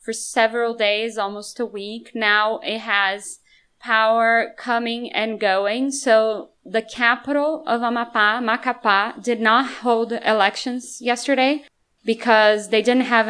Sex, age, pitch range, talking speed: female, 20-39, 195-235 Hz, 125 wpm